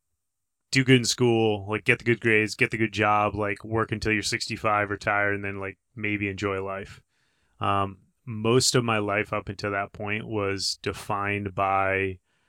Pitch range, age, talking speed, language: 100-110 Hz, 30-49, 180 wpm, English